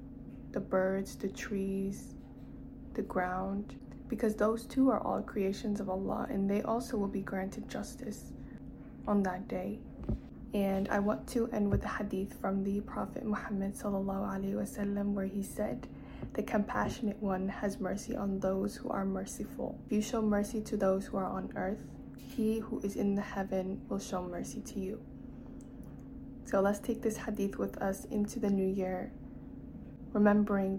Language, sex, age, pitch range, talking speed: English, female, 20-39, 190-210 Hz, 160 wpm